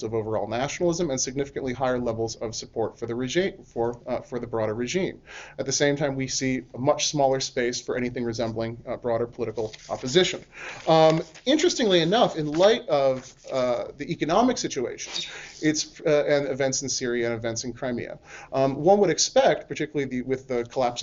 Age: 30-49